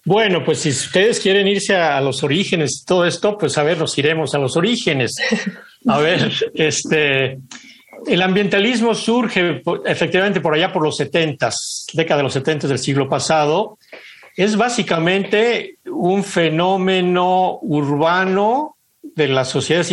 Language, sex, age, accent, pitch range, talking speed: Spanish, male, 60-79, Mexican, 140-190 Hz, 140 wpm